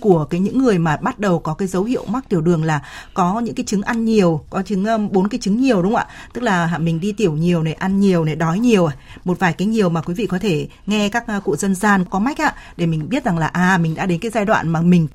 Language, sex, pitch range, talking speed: Vietnamese, female, 175-230 Hz, 295 wpm